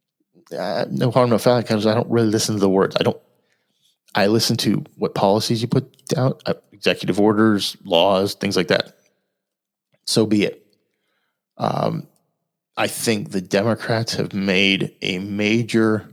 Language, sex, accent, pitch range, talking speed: English, male, American, 100-130 Hz, 155 wpm